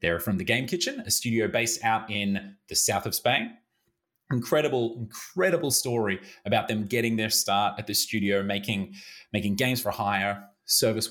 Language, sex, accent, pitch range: English, male, Australian, 100-125 Hz